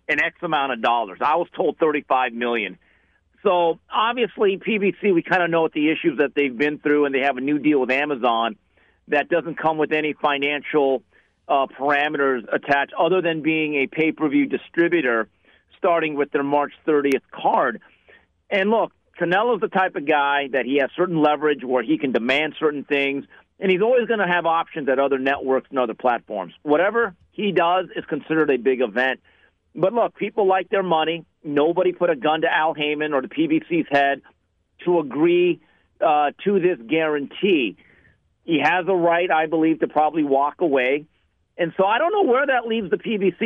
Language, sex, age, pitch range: English, male, 50-69, 145-185 Hz